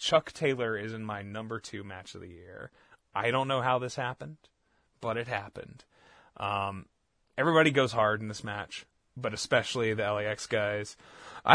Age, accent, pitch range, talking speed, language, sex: 20-39, American, 105-150 Hz, 170 wpm, English, male